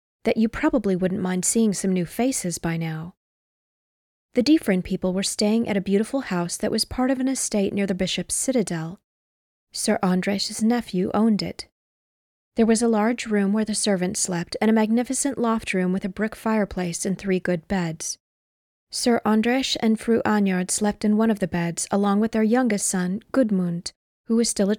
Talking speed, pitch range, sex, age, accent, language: 190 wpm, 185-225 Hz, female, 20-39, American, English